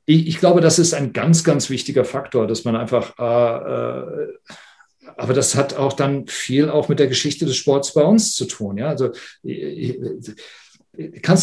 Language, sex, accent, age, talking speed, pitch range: German, male, German, 50-69, 160 wpm, 125-185 Hz